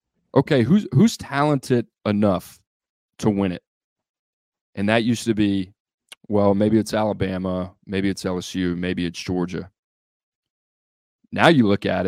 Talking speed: 135 wpm